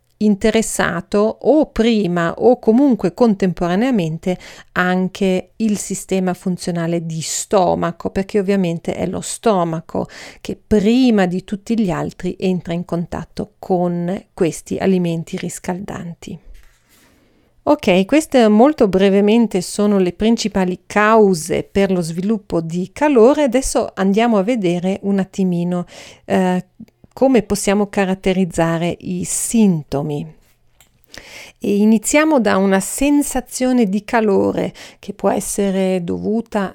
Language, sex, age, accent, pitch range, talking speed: Italian, female, 40-59, native, 180-220 Hz, 105 wpm